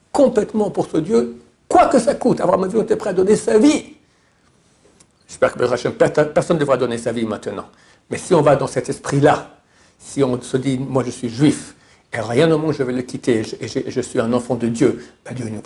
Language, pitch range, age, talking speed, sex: French, 120-155 Hz, 60-79, 240 wpm, male